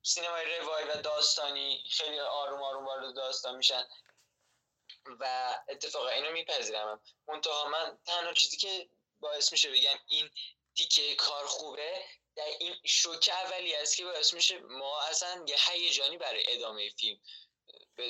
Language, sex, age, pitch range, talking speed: Persian, male, 10-29, 125-175 Hz, 140 wpm